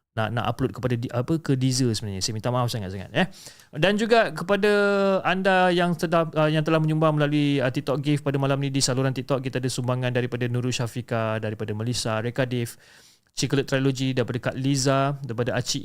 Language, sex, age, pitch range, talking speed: Malay, male, 30-49, 115-145 Hz, 190 wpm